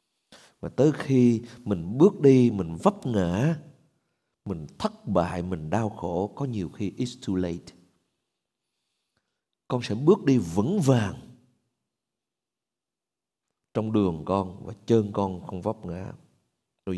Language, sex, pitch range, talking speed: Vietnamese, male, 100-140 Hz, 130 wpm